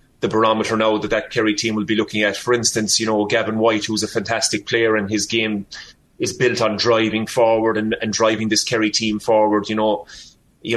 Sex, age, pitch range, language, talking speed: male, 30-49, 105-115 Hz, English, 215 wpm